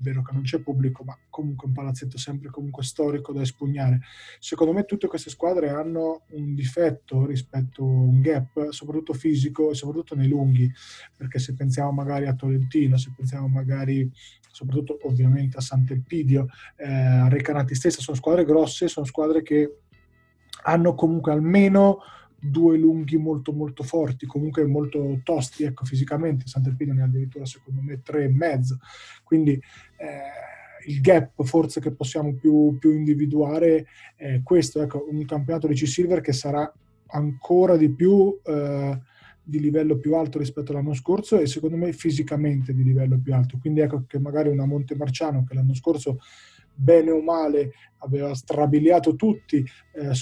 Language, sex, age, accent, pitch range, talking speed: Italian, male, 20-39, native, 135-155 Hz, 160 wpm